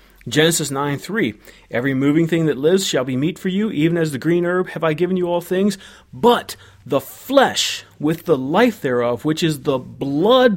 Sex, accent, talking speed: male, American, 195 wpm